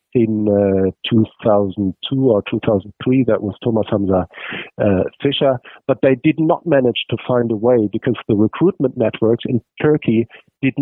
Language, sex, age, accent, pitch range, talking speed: English, male, 50-69, German, 115-140 Hz, 150 wpm